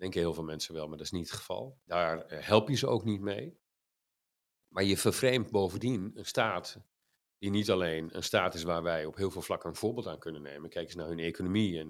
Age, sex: 50-69, male